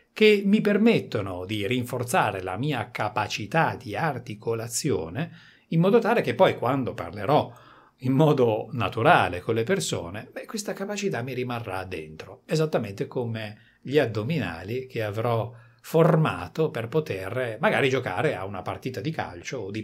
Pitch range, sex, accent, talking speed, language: 120-180 Hz, male, native, 140 wpm, Italian